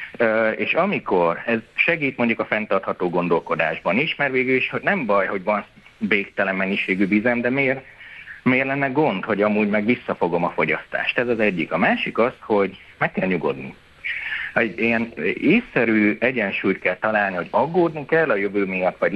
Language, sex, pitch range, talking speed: Hungarian, male, 105-145 Hz, 165 wpm